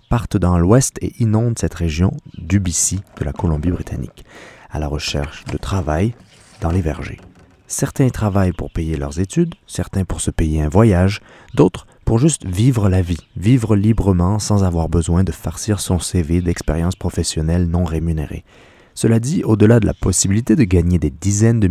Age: 30-49